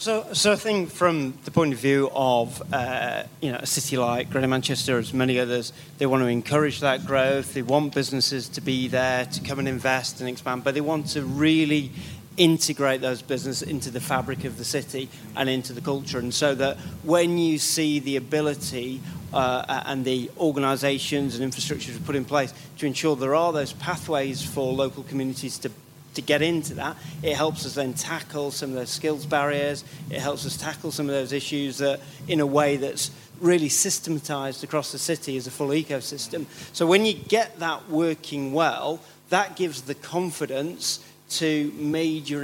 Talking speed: 185 wpm